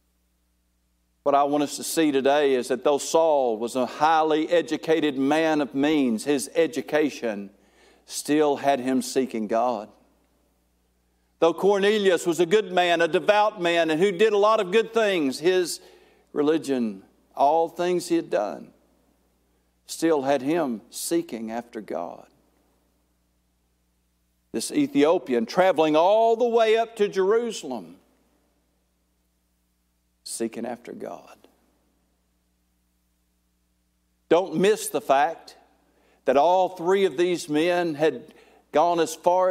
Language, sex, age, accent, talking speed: English, male, 50-69, American, 125 wpm